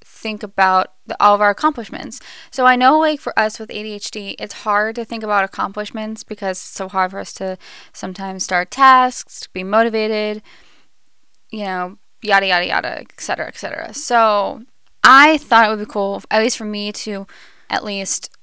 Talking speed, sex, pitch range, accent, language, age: 175 wpm, female, 195-225 Hz, American, English, 10-29